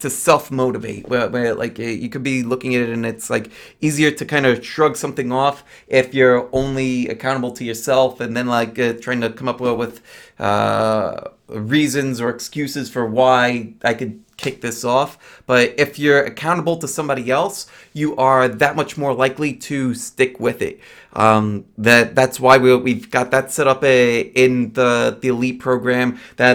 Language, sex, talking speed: English, male, 185 wpm